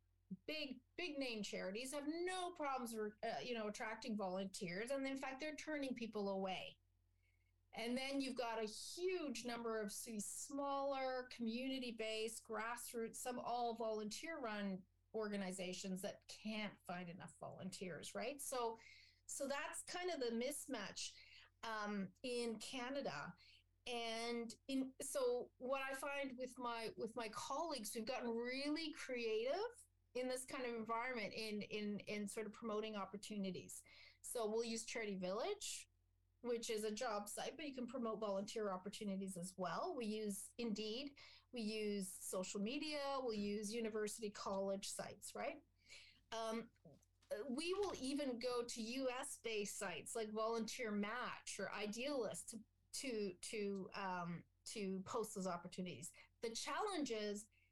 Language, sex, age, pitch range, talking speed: English, female, 40-59, 195-255 Hz, 140 wpm